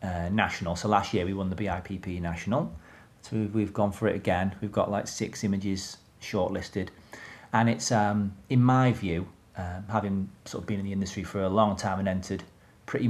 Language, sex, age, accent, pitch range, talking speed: English, male, 40-59, British, 95-110 Hz, 200 wpm